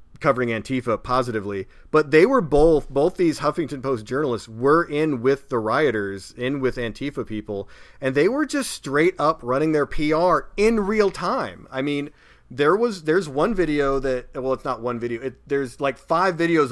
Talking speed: 185 wpm